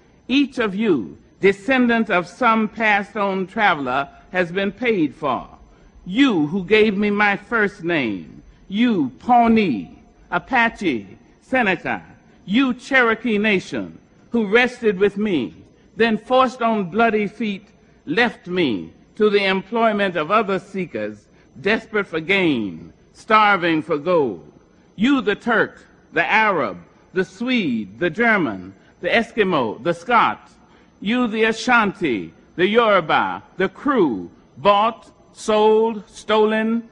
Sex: male